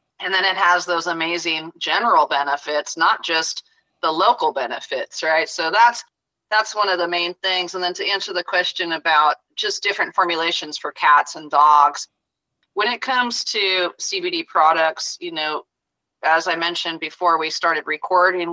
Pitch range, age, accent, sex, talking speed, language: 155-200 Hz, 30-49, American, female, 165 wpm, English